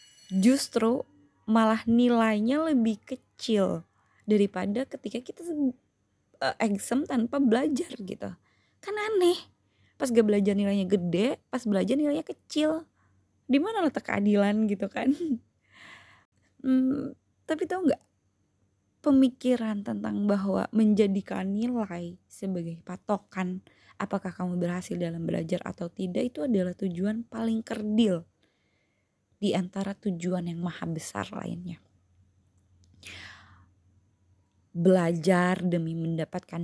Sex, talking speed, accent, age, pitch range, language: female, 100 wpm, native, 20-39, 165-225 Hz, Indonesian